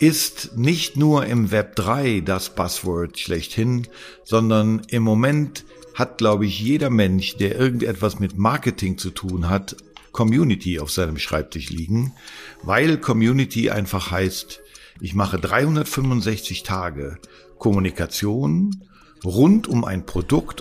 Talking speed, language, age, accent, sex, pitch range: 120 wpm, German, 50-69, German, male, 95-130 Hz